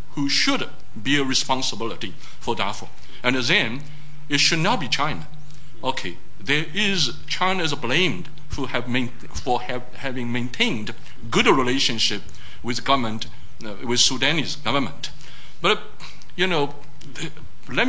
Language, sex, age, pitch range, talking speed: English, male, 60-79, 125-155 Hz, 130 wpm